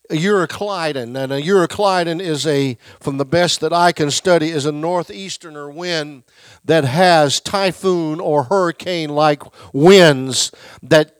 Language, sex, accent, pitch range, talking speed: English, male, American, 150-195 Hz, 130 wpm